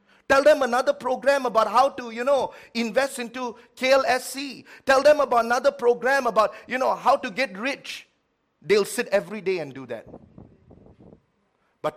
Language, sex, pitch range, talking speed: English, male, 165-255 Hz, 160 wpm